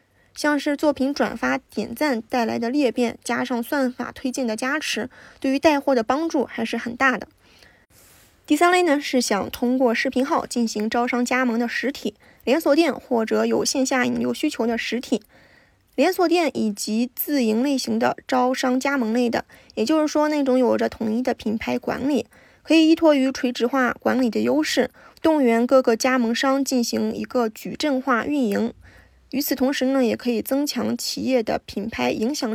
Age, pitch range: 20-39, 235-280 Hz